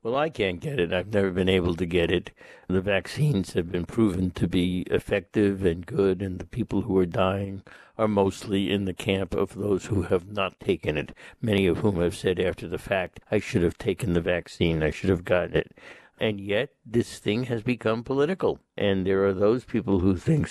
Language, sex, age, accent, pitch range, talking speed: English, male, 60-79, American, 95-120 Hz, 215 wpm